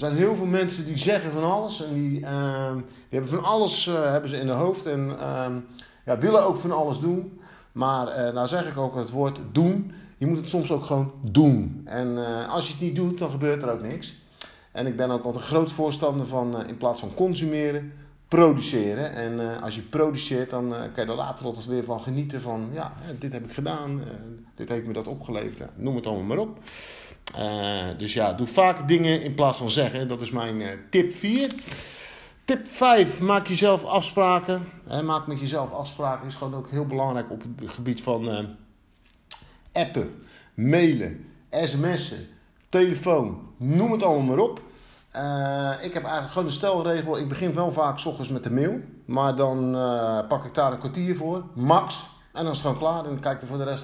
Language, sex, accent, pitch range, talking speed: Dutch, male, Dutch, 125-165 Hz, 210 wpm